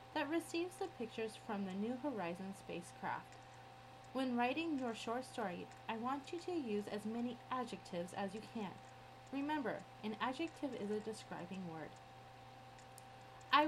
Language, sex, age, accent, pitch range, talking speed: English, female, 30-49, American, 200-285 Hz, 145 wpm